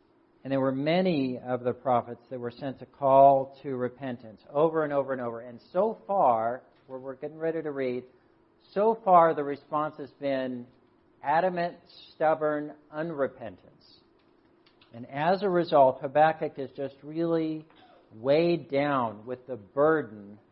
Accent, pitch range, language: American, 130-180 Hz, English